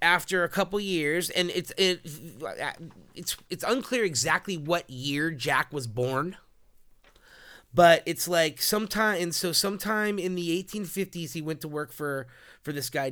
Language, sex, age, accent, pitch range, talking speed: English, male, 30-49, American, 145-185 Hz, 160 wpm